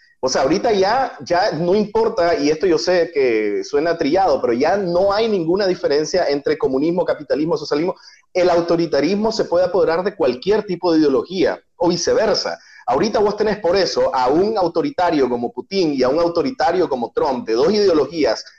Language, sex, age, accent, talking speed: Spanish, male, 30-49, Venezuelan, 180 wpm